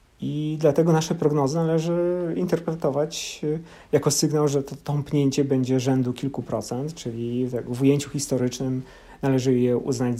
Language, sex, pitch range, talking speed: Polish, male, 125-150 Hz, 130 wpm